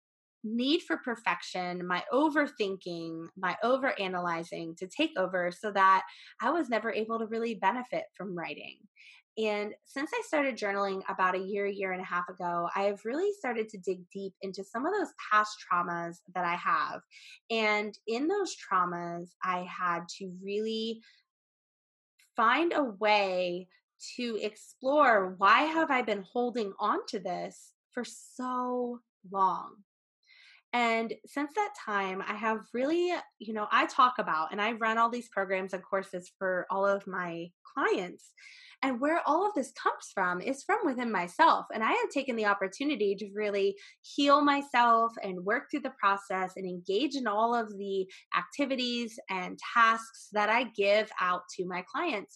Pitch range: 190-265 Hz